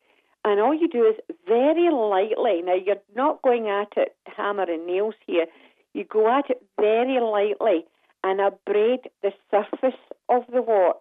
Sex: female